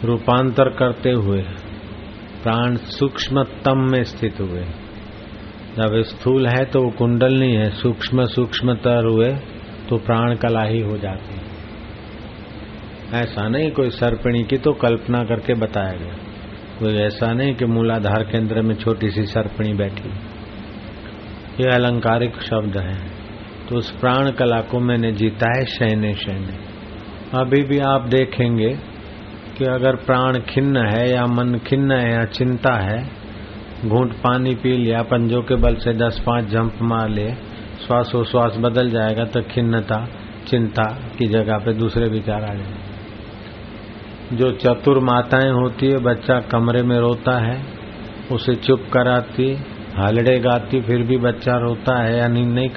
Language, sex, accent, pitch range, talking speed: Hindi, male, native, 105-125 Hz, 145 wpm